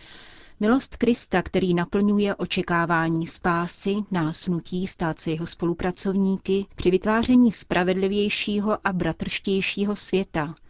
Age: 30-49